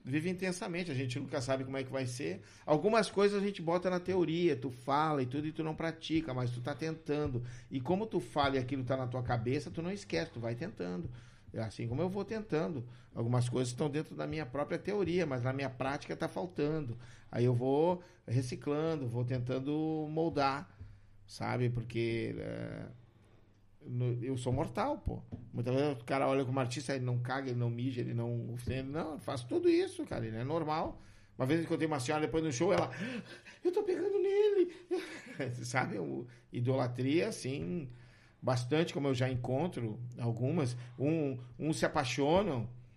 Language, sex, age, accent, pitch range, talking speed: Portuguese, male, 50-69, Brazilian, 125-160 Hz, 185 wpm